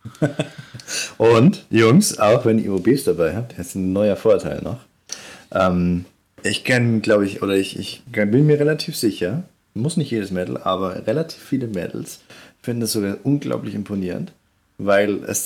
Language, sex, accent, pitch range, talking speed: German, male, German, 90-110 Hz, 155 wpm